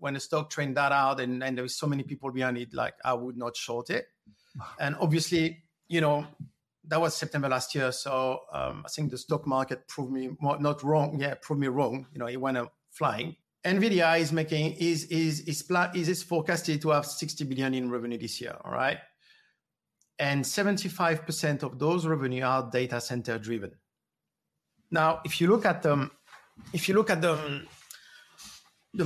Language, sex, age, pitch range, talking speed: English, male, 50-69, 130-160 Hz, 185 wpm